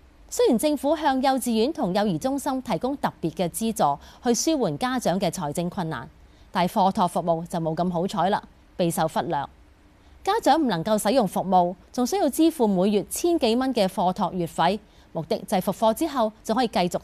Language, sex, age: Chinese, female, 30-49